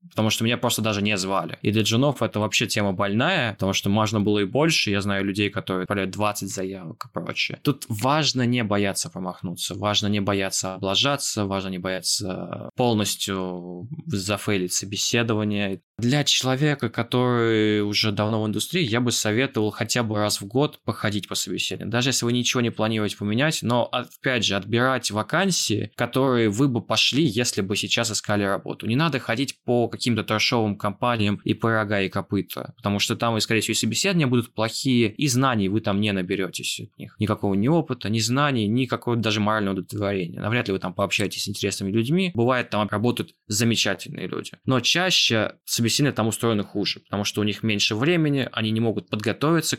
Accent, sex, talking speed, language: native, male, 180 wpm, Russian